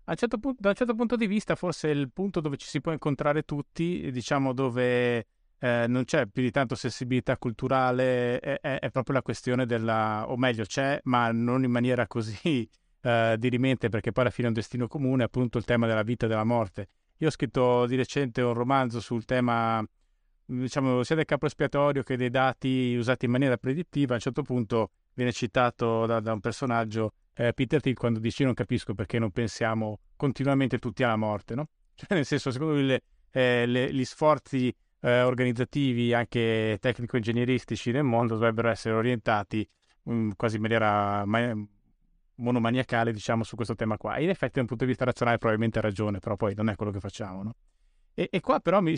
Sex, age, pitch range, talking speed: male, 30-49, 115-135 Hz, 195 wpm